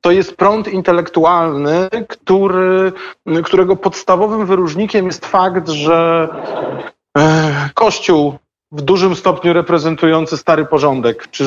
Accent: native